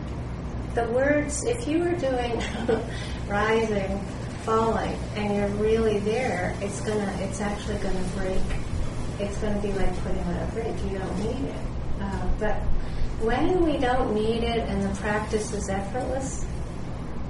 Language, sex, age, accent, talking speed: English, female, 40-59, American, 140 wpm